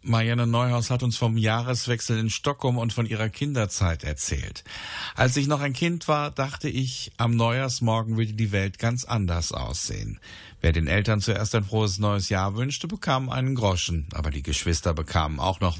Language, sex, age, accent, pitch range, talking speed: German, male, 50-69, German, 95-125 Hz, 180 wpm